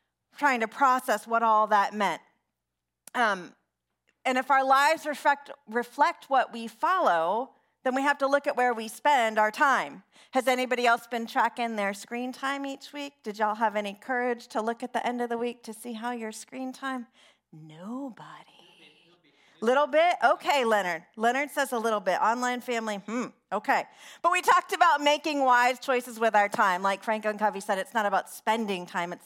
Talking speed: 185 wpm